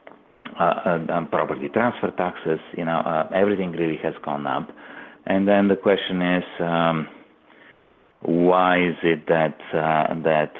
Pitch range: 75-90 Hz